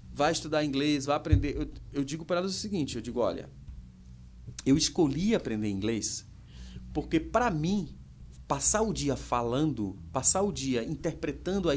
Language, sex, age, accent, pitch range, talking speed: Portuguese, male, 30-49, Brazilian, 115-180 Hz, 160 wpm